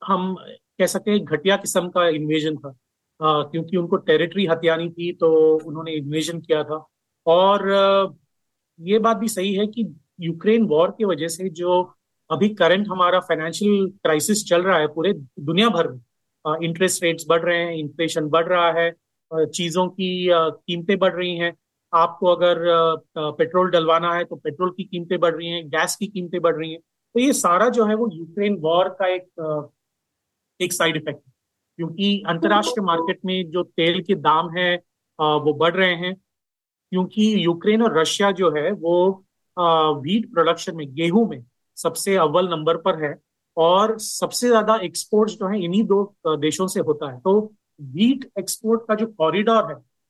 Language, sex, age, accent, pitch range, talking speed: Hindi, male, 30-49, native, 160-195 Hz, 165 wpm